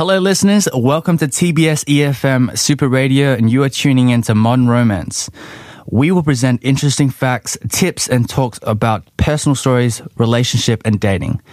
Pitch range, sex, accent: 115-140 Hz, male, Australian